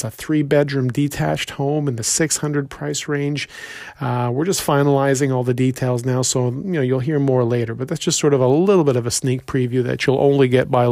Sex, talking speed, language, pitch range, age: male, 230 wpm, English, 125-145 Hz, 40-59